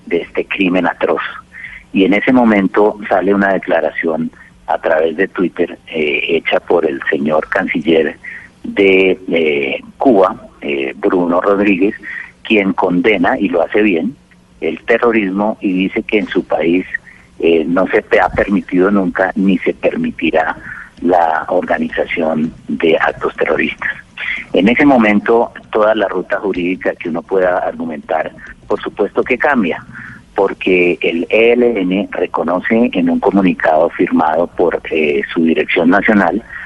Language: Spanish